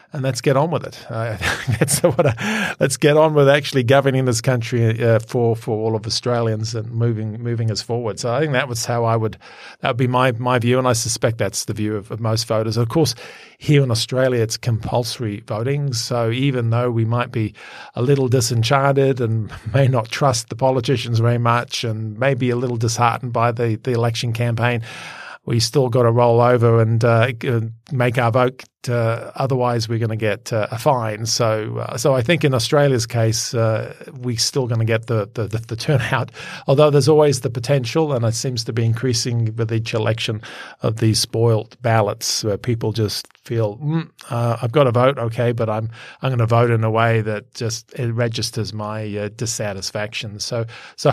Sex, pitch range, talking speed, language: male, 115-130 Hz, 205 wpm, English